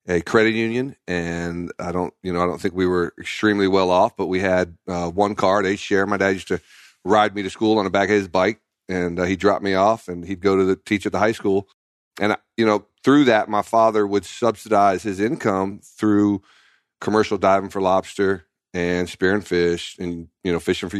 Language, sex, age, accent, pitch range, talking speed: English, male, 40-59, American, 90-100 Hz, 225 wpm